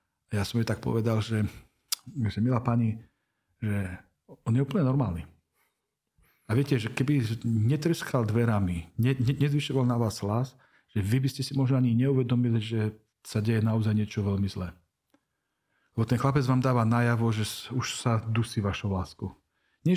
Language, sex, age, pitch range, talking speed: Slovak, male, 40-59, 110-130 Hz, 160 wpm